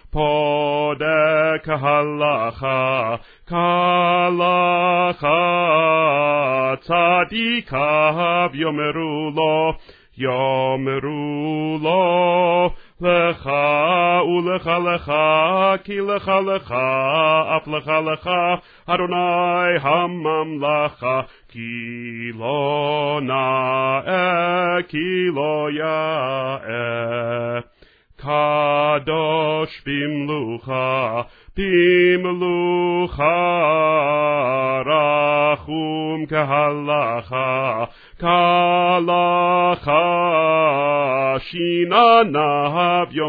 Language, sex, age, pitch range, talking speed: Russian, male, 40-59, 145-175 Hz, 30 wpm